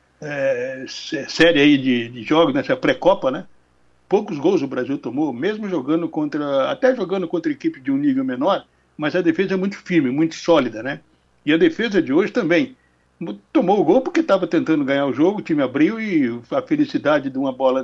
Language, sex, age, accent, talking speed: Portuguese, male, 60-79, Brazilian, 200 wpm